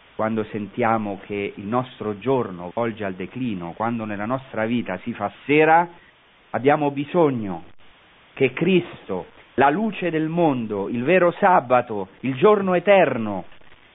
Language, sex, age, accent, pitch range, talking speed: Italian, male, 40-59, native, 105-155 Hz, 130 wpm